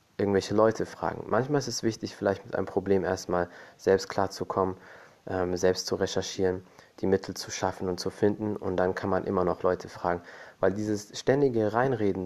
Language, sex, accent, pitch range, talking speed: German, male, German, 95-110 Hz, 180 wpm